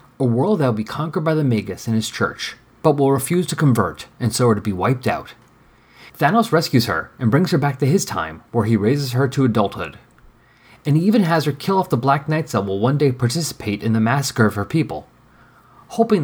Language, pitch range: English, 115-145 Hz